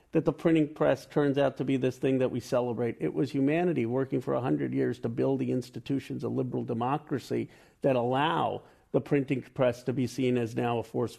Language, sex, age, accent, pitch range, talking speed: English, male, 50-69, American, 120-145 Hz, 210 wpm